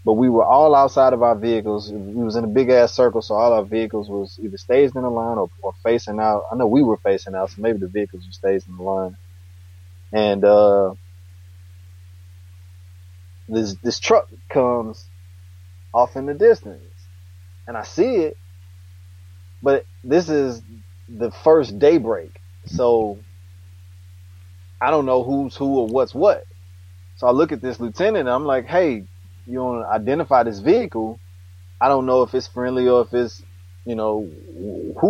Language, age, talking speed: English, 20-39, 175 wpm